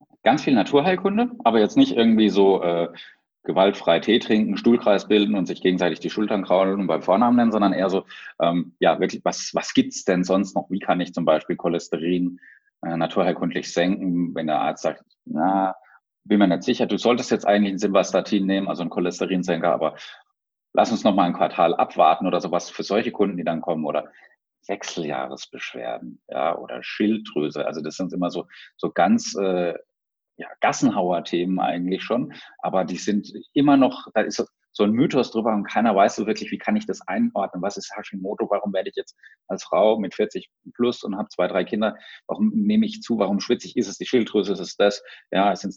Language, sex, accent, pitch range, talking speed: German, male, German, 90-110 Hz, 200 wpm